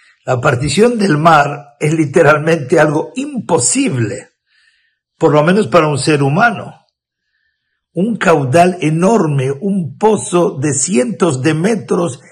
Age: 60-79